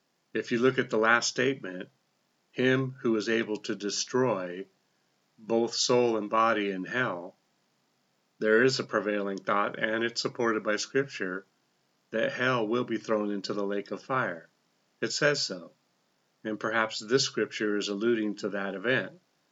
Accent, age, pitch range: American, 40-59, 105-130 Hz